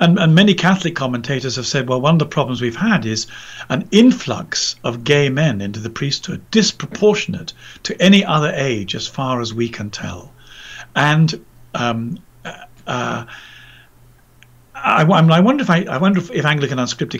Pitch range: 115-160 Hz